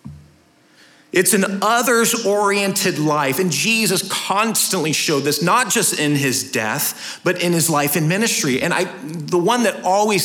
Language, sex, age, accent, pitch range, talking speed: English, male, 40-59, American, 135-185 Hz, 150 wpm